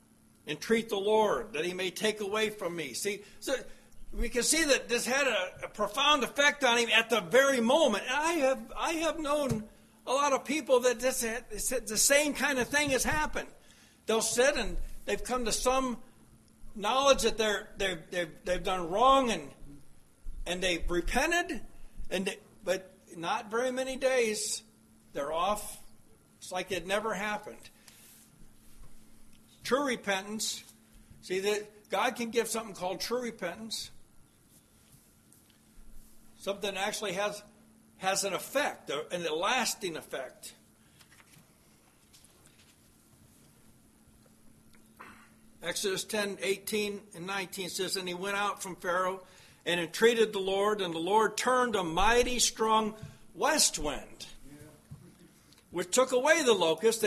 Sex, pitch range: male, 195-250 Hz